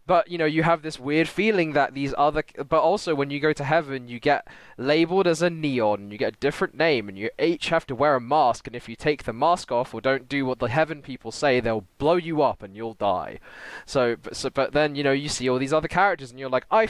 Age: 20-39